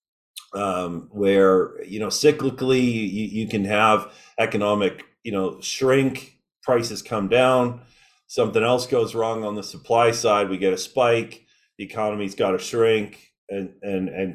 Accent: American